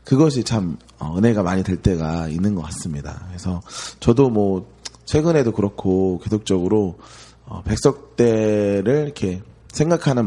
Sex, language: male, Korean